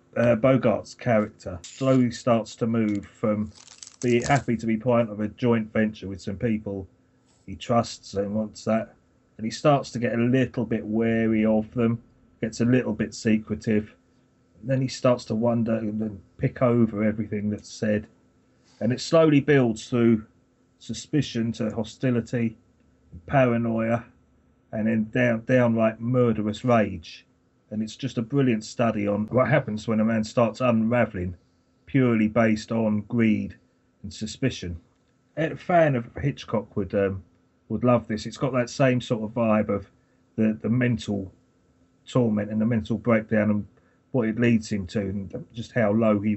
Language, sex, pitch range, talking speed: English, male, 105-120 Hz, 165 wpm